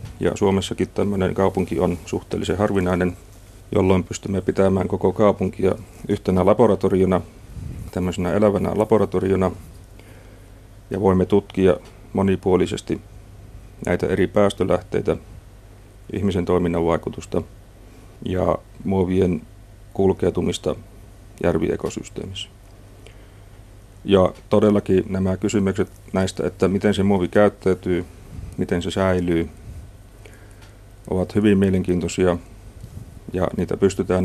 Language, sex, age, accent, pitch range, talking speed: Finnish, male, 40-59, native, 90-100 Hz, 90 wpm